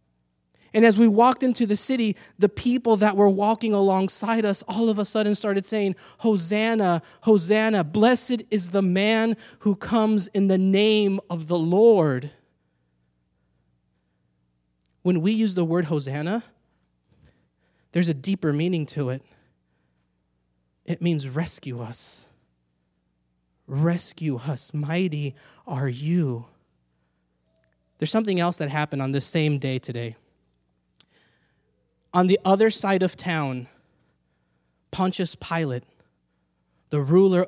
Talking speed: 120 wpm